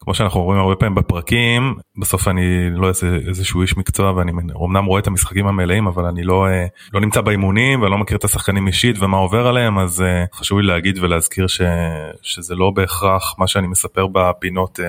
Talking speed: 185 wpm